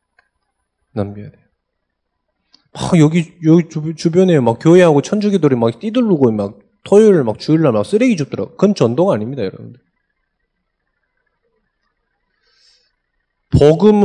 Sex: male